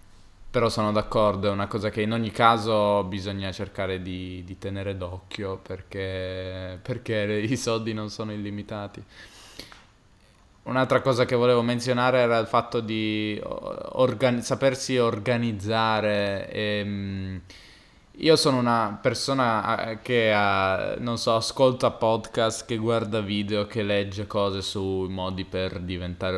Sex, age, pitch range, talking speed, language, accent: male, 20-39, 95-115 Hz, 125 wpm, Italian, native